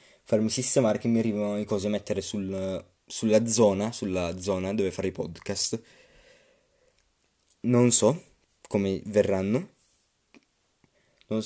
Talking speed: 115 wpm